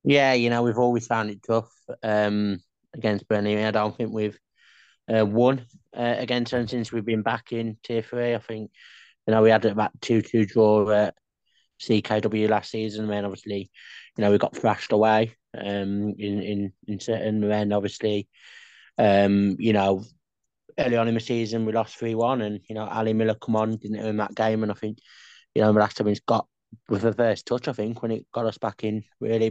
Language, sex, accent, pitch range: English, male, British, 105-115 Hz